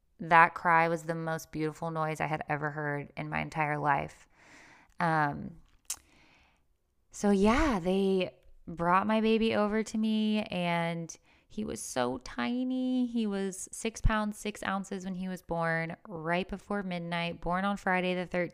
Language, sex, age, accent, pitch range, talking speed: English, female, 20-39, American, 155-190 Hz, 150 wpm